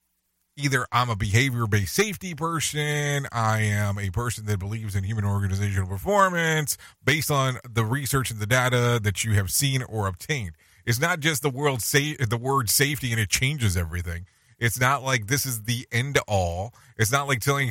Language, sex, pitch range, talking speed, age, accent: English, male, 105-140 Hz, 185 wpm, 30-49, American